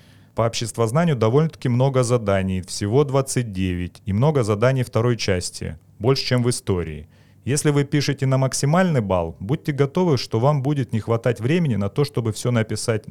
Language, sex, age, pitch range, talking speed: Russian, male, 30-49, 100-135 Hz, 160 wpm